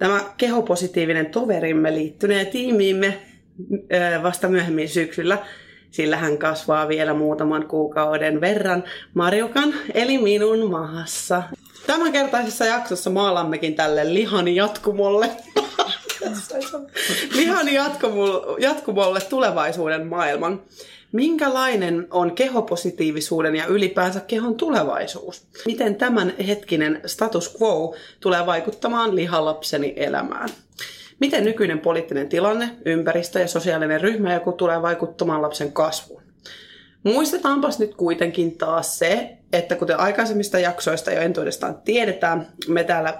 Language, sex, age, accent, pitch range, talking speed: Finnish, female, 30-49, native, 160-215 Hz, 100 wpm